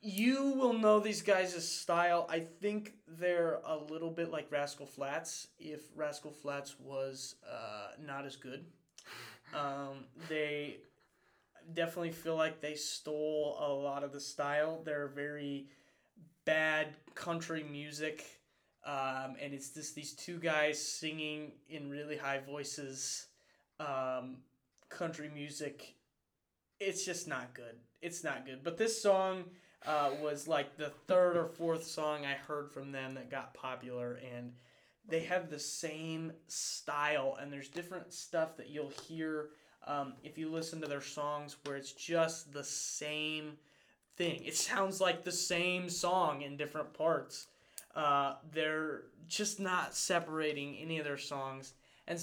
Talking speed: 145 wpm